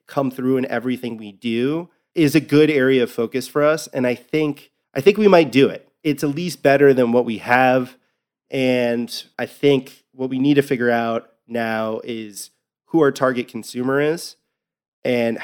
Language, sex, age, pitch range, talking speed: English, male, 20-39, 120-145 Hz, 185 wpm